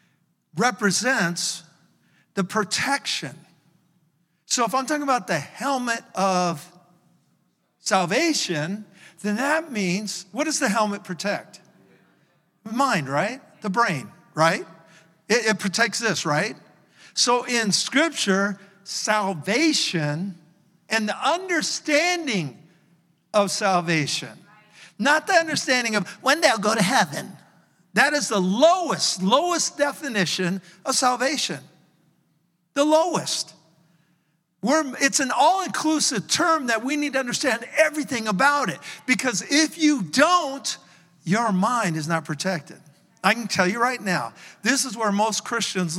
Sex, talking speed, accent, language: male, 120 wpm, American, English